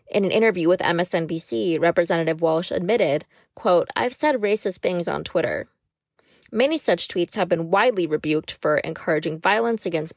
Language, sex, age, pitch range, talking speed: English, female, 20-39, 170-240 Hz, 155 wpm